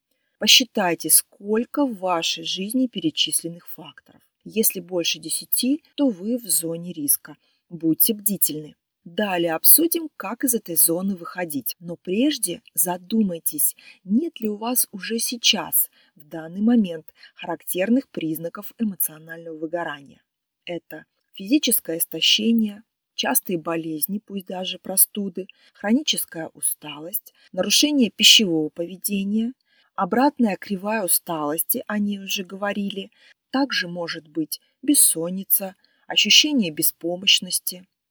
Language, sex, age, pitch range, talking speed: Russian, female, 30-49, 170-230 Hz, 105 wpm